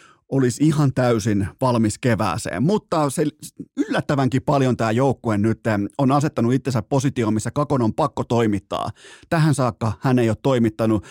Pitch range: 120-155 Hz